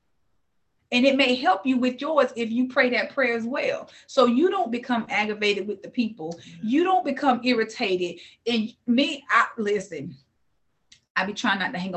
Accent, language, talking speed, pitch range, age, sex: American, English, 175 wpm, 215-275 Hz, 30-49, female